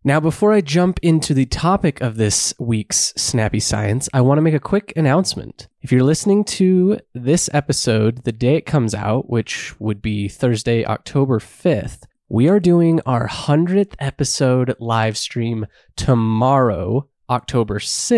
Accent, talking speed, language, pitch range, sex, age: American, 150 wpm, English, 115-160 Hz, male, 20-39